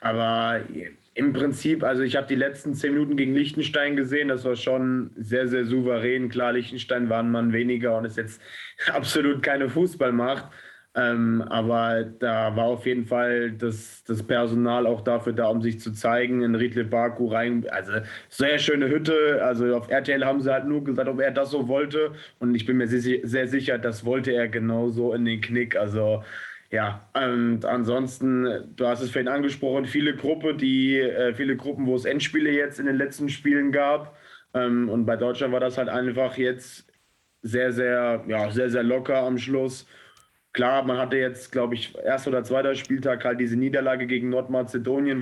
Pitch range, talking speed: 120-135 Hz, 180 wpm